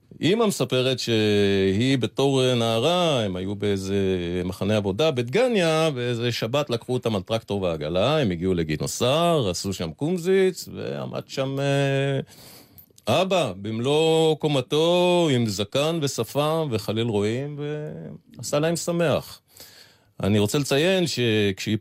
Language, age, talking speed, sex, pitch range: Hebrew, 40-59, 115 wpm, male, 100-140 Hz